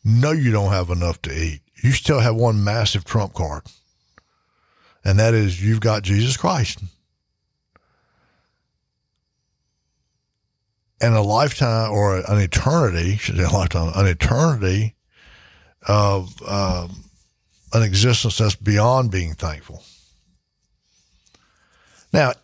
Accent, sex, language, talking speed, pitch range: American, male, English, 115 wpm, 95-130 Hz